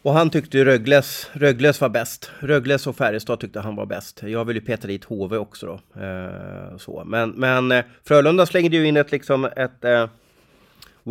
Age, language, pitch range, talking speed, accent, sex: 30-49, English, 115-140 Hz, 195 wpm, Swedish, male